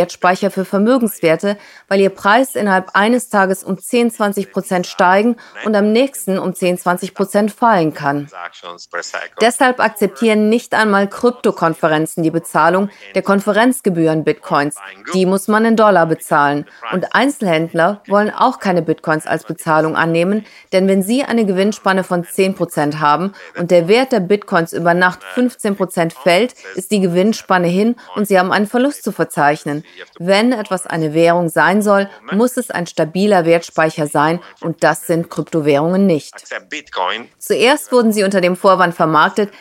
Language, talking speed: German, 145 wpm